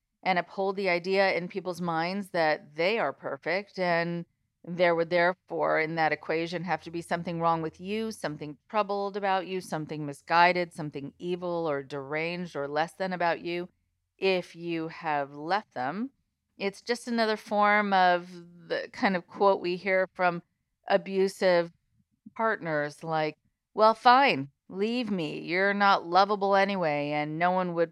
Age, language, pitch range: 40-59, English, 150-190 Hz